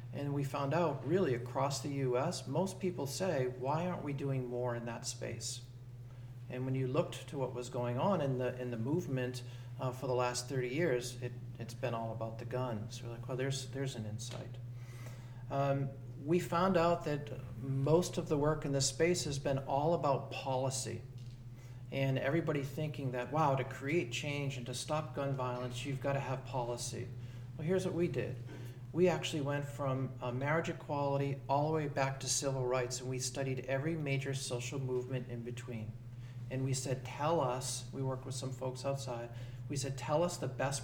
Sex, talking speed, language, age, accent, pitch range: male, 195 wpm, English, 40-59, American, 125-140 Hz